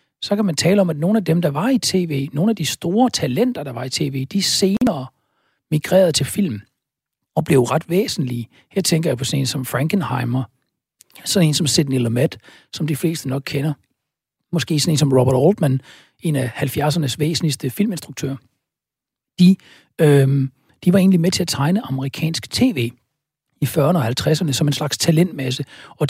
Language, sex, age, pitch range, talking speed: Danish, male, 60-79, 135-170 Hz, 180 wpm